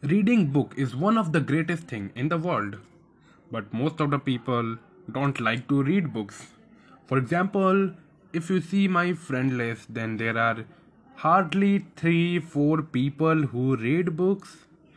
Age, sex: 10-29, male